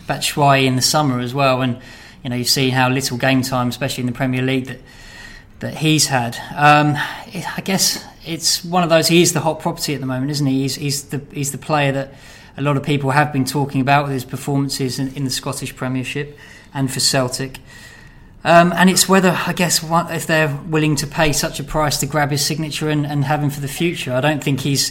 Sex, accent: male, British